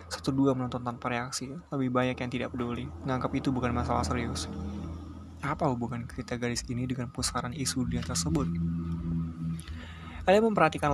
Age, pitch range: 20-39, 120-135 Hz